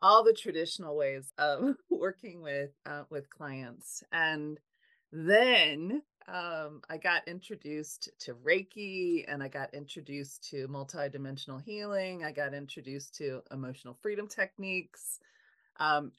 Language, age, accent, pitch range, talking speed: English, 30-49, American, 150-205 Hz, 120 wpm